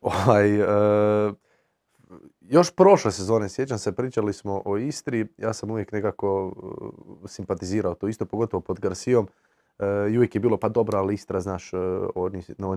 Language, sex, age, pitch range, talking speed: Croatian, male, 30-49, 95-120 Hz, 160 wpm